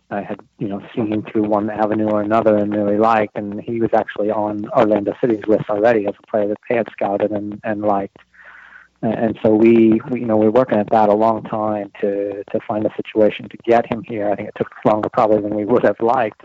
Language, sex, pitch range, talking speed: English, male, 105-115 Hz, 240 wpm